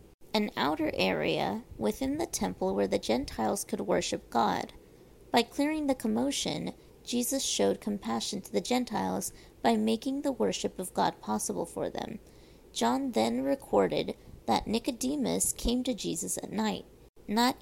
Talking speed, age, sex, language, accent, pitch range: 145 wpm, 30-49, female, English, American, 185-245 Hz